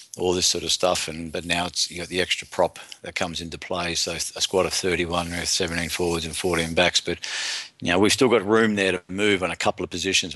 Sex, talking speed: male, 260 wpm